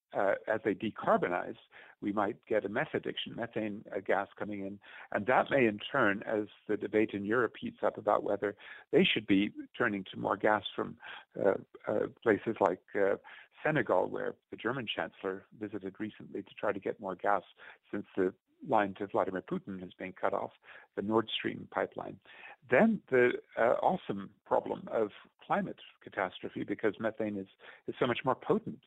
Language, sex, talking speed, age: English, male, 175 wpm, 50-69